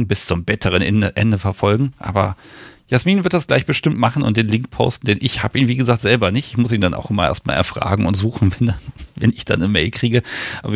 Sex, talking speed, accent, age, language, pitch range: male, 240 wpm, German, 40-59, German, 110-140 Hz